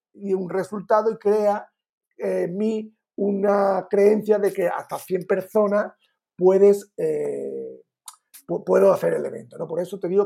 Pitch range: 185-220 Hz